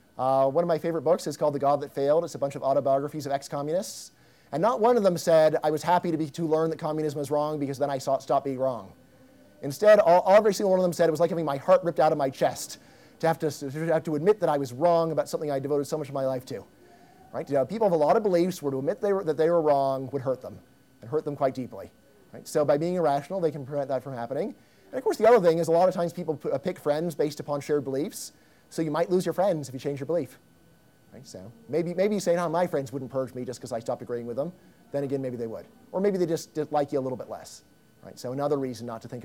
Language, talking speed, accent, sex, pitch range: English, 290 wpm, American, male, 135-170 Hz